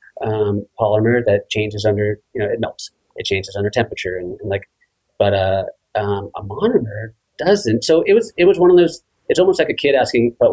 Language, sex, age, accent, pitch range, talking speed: English, male, 30-49, American, 110-165 Hz, 210 wpm